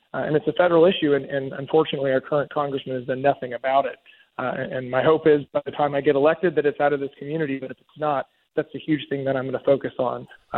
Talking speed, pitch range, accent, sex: 280 wpm, 135-155 Hz, American, male